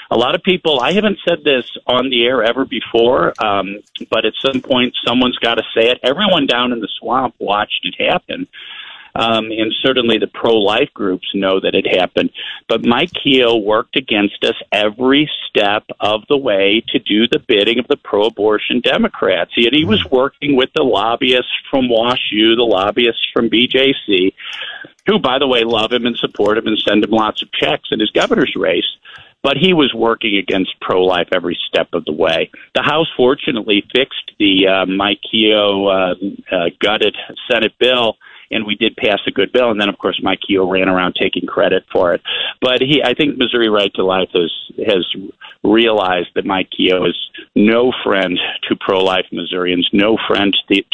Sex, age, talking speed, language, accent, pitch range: male, 50-69, 185 wpm, English, American, 100-130 Hz